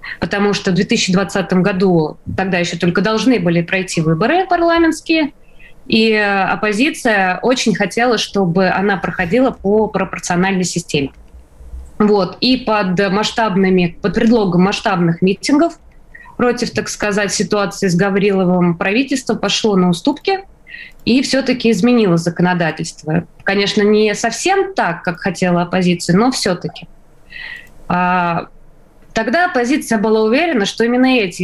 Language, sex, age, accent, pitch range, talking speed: Russian, female, 20-39, native, 180-230 Hz, 115 wpm